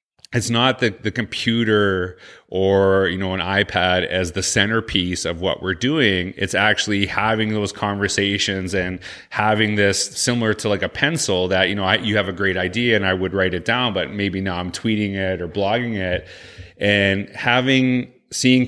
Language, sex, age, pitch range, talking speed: English, male, 30-49, 95-110 Hz, 180 wpm